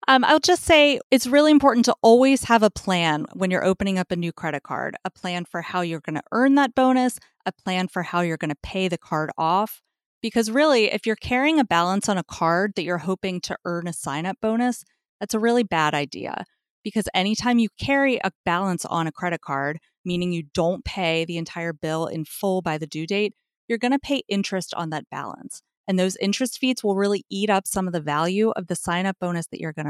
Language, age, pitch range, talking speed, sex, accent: English, 30-49, 170-225 Hz, 230 wpm, female, American